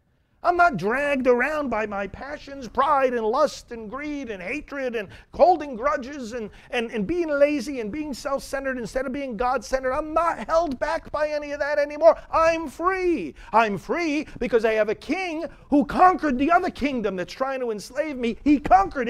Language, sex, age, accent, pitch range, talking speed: English, male, 40-59, American, 185-290 Hz, 190 wpm